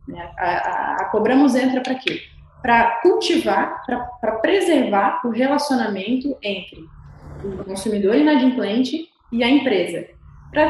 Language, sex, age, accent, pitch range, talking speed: Portuguese, female, 20-39, Brazilian, 200-280 Hz, 120 wpm